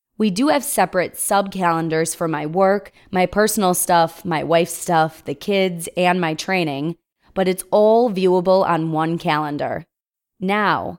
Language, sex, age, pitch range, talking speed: English, female, 20-39, 170-205 Hz, 145 wpm